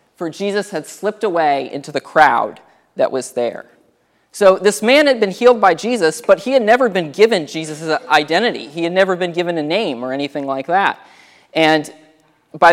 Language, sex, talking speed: English, male, 190 wpm